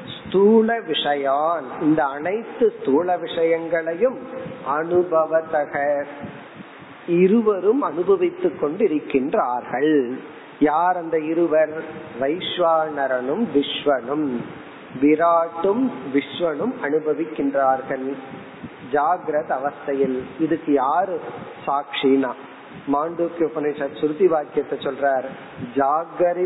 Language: Tamil